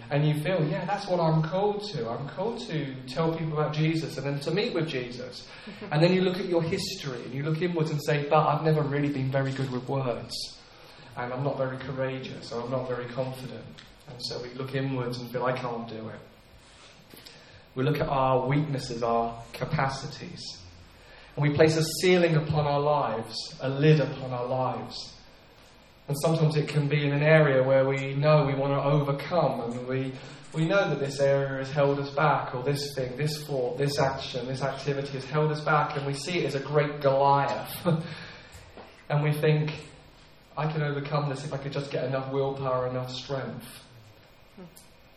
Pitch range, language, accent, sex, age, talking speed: 130-155 Hz, English, British, male, 30-49, 195 wpm